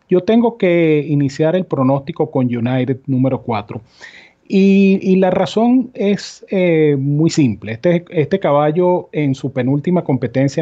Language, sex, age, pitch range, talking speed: Spanish, male, 40-59, 125-170 Hz, 140 wpm